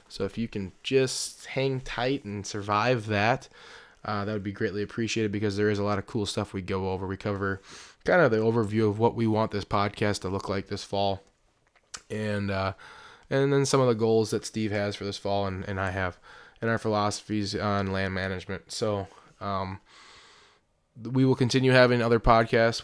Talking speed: 200 wpm